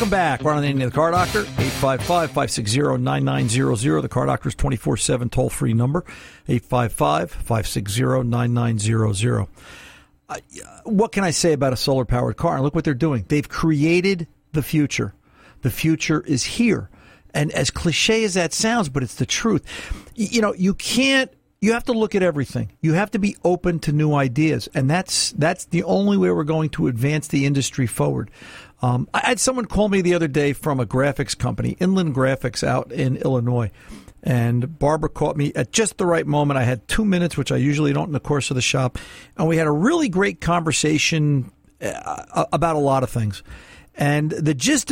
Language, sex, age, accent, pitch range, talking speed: English, male, 50-69, American, 125-170 Hz, 185 wpm